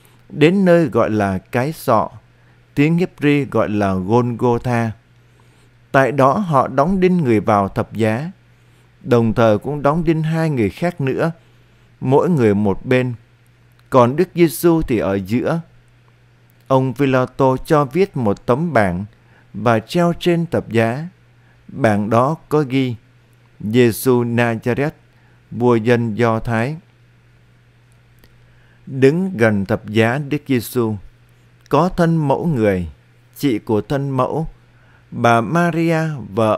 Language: Vietnamese